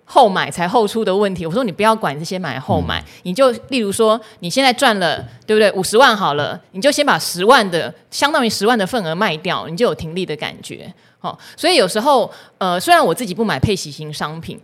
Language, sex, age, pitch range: Chinese, female, 20-39, 165-220 Hz